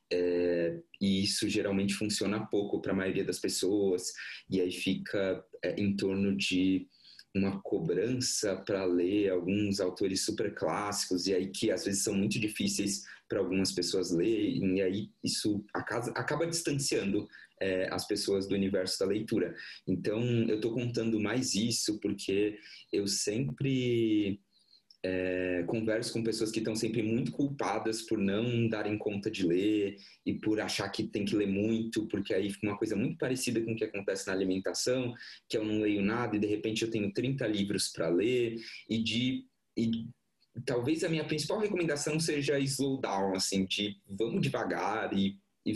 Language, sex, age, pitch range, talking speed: Portuguese, male, 20-39, 100-115 Hz, 165 wpm